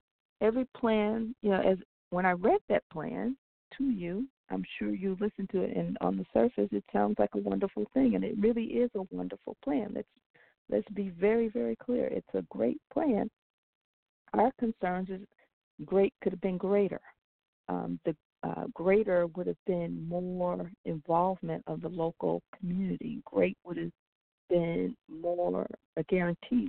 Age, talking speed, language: 50-69, 165 wpm, English